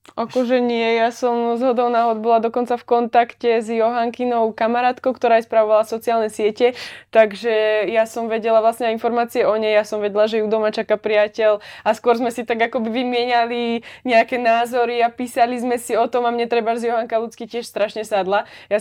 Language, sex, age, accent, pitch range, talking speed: Czech, female, 20-39, native, 210-245 Hz, 190 wpm